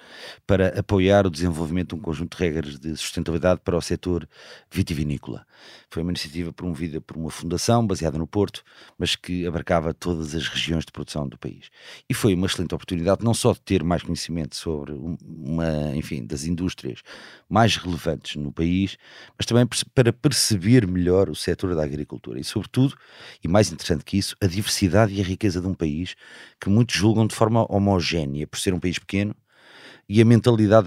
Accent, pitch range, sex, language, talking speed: Portuguese, 85-105 Hz, male, Portuguese, 180 wpm